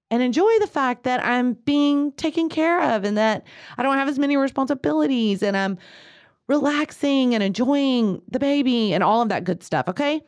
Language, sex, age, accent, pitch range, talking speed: English, female, 30-49, American, 165-245 Hz, 185 wpm